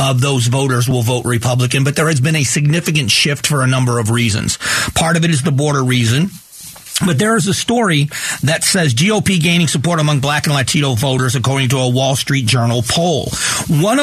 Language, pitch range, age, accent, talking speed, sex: English, 125-165 Hz, 40-59, American, 205 wpm, male